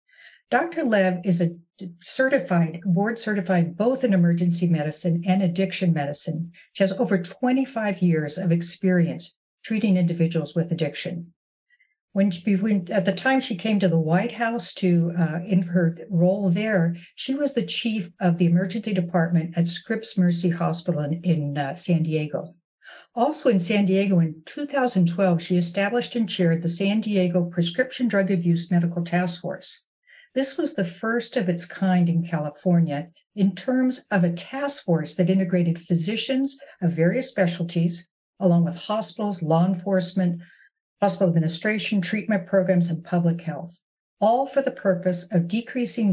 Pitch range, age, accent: 170-210 Hz, 60-79, American